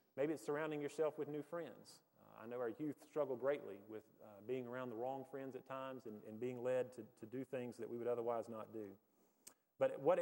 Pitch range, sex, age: 115-140 Hz, male, 30-49